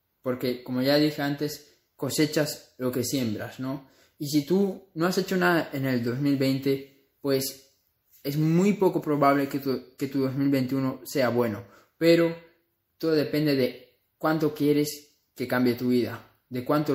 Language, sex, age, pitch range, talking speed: Spanish, male, 20-39, 125-145 Hz, 155 wpm